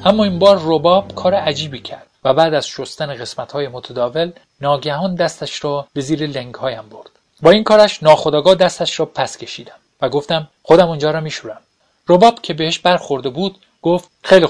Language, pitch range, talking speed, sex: Persian, 140-175 Hz, 180 wpm, male